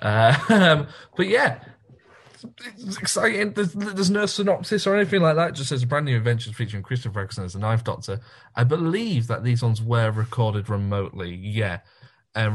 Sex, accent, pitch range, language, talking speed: male, British, 100-125 Hz, English, 185 wpm